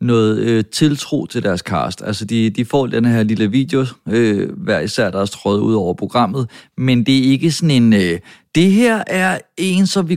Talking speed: 190 wpm